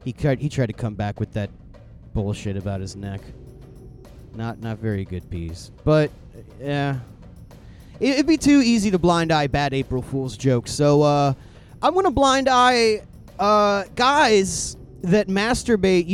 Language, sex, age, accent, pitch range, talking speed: English, male, 30-49, American, 140-230 Hz, 150 wpm